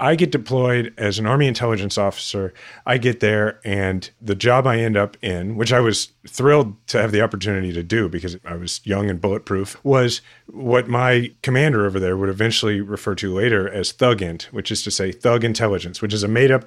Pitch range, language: 100-125 Hz, English